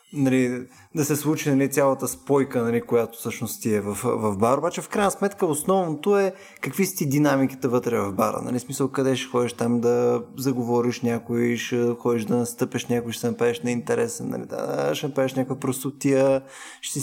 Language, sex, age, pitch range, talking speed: Bulgarian, male, 20-39, 120-170 Hz, 185 wpm